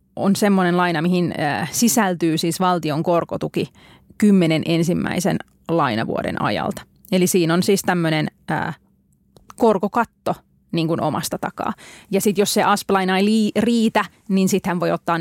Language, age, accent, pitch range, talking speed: Finnish, 30-49, native, 170-210 Hz, 125 wpm